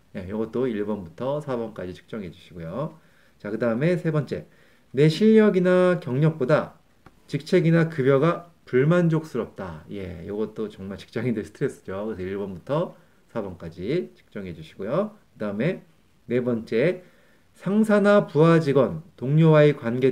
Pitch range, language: 110-160 Hz, Korean